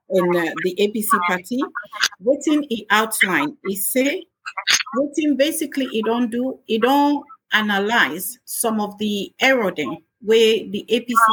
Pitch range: 200-260 Hz